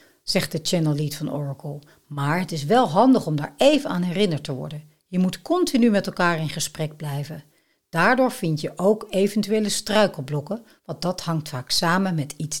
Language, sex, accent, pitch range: Dutch, female, Dutch, 150-215 Hz